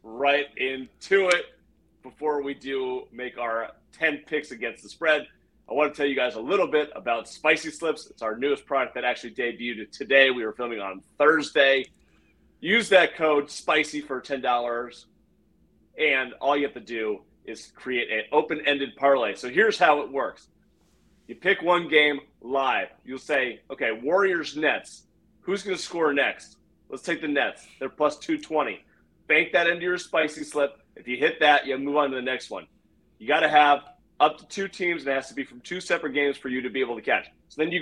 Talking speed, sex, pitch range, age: 200 wpm, male, 130-155 Hz, 30-49